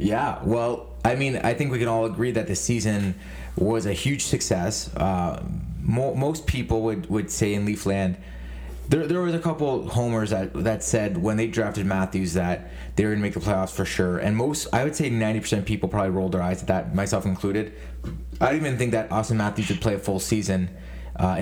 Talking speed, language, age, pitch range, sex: 220 wpm, English, 30-49, 90-115 Hz, male